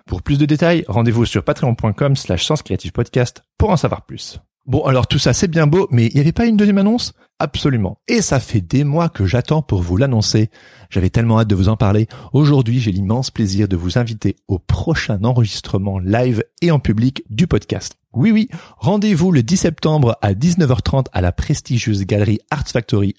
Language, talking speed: French, 195 wpm